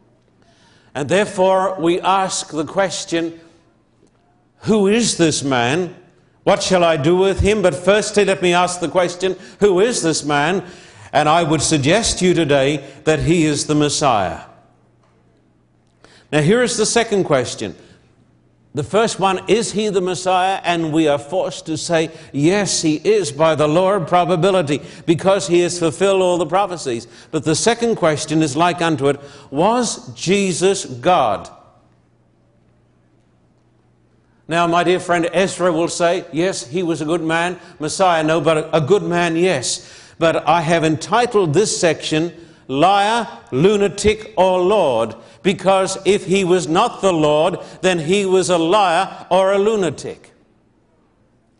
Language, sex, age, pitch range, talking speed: English, male, 60-79, 150-190 Hz, 150 wpm